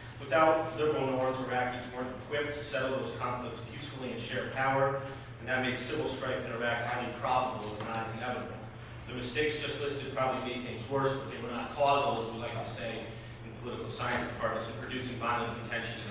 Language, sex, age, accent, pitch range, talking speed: English, male, 40-59, American, 115-130 Hz, 195 wpm